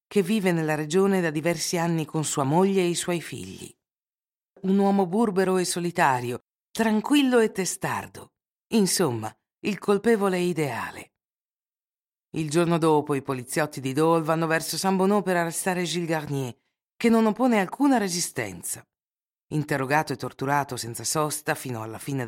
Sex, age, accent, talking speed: female, 50-69, native, 145 wpm